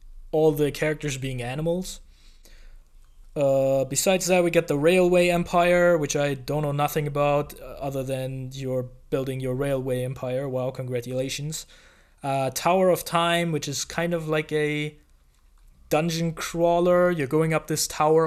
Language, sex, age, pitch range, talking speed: English, male, 20-39, 130-155 Hz, 150 wpm